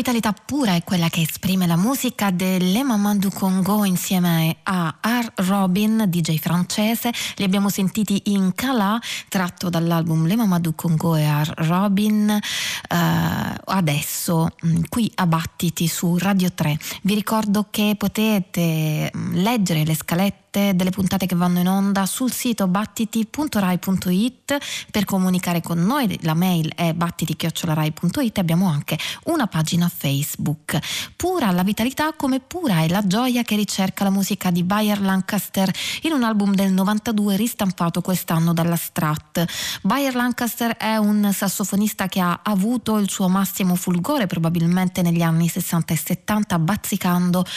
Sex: female